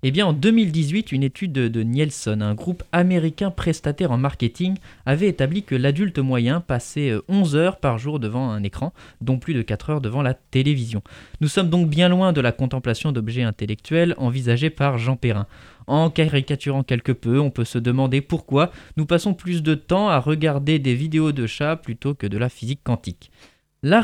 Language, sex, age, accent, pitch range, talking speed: French, male, 20-39, French, 120-165 Hz, 190 wpm